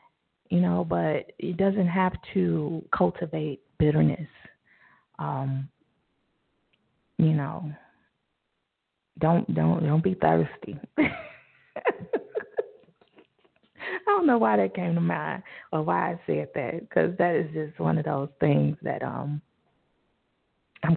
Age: 30-49